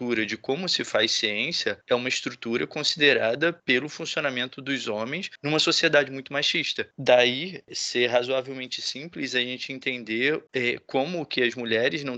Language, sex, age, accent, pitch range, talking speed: Portuguese, male, 20-39, Brazilian, 115-145 Hz, 150 wpm